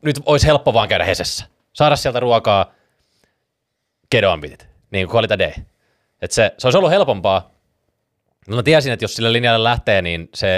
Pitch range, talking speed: 95-125 Hz, 160 wpm